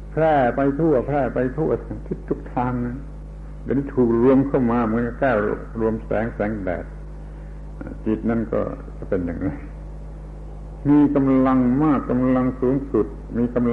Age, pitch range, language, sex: 70-89, 80-130 Hz, Thai, male